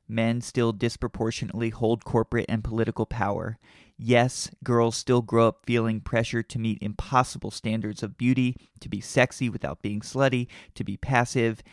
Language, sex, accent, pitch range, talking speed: English, male, American, 110-130 Hz, 155 wpm